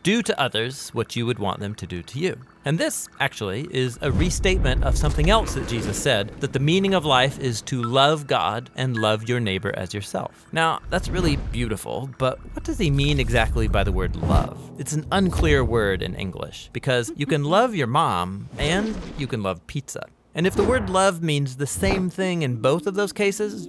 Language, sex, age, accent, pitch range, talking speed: English, male, 30-49, American, 105-155 Hz, 220 wpm